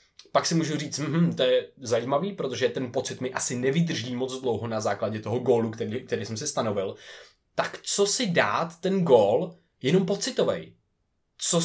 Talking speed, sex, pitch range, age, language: 175 wpm, male, 125-165 Hz, 20-39, Czech